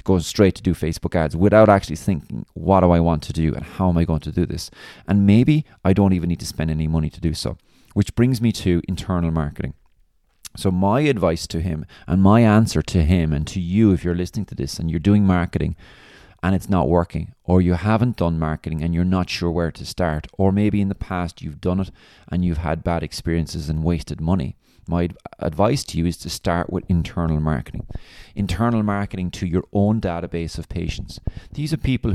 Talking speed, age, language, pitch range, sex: 220 wpm, 30-49, English, 85-100 Hz, male